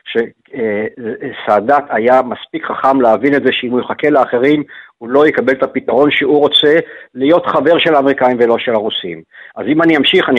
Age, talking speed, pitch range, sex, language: 50-69, 175 wpm, 135-170 Hz, male, Hebrew